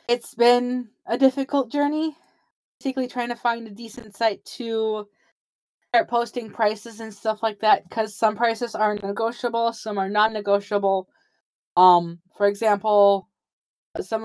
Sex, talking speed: female, 135 wpm